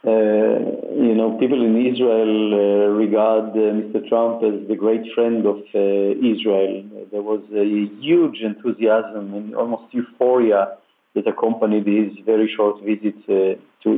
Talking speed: 145 wpm